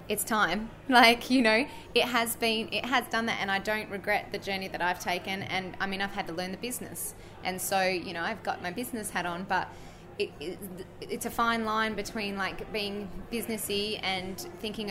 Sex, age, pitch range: female, 20-39, 180-220 Hz